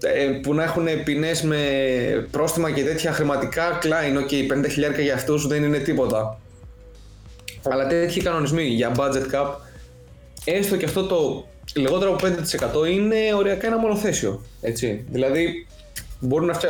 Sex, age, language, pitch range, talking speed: male, 20-39, Greek, 115-165 Hz, 135 wpm